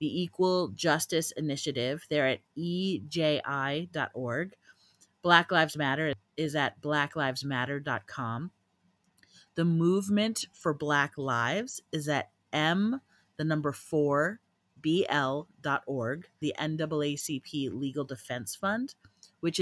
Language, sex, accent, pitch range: English, female, American, 140-165 Hz